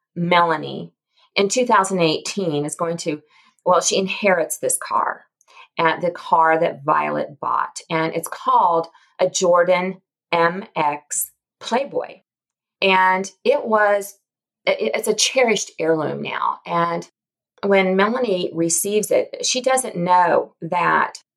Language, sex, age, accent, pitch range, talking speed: English, female, 40-59, American, 165-205 Hz, 115 wpm